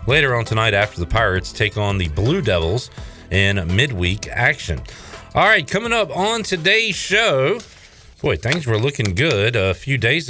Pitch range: 90-115 Hz